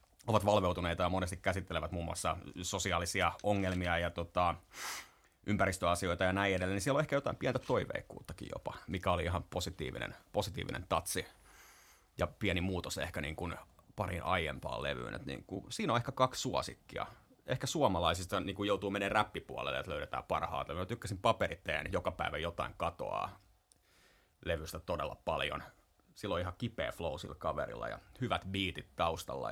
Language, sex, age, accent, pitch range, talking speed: Finnish, male, 30-49, native, 85-100 Hz, 140 wpm